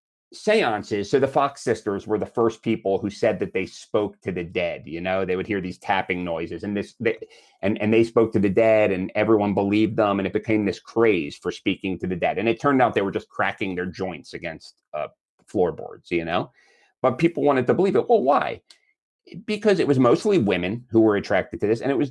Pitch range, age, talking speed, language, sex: 100-140 Hz, 30-49, 230 wpm, English, male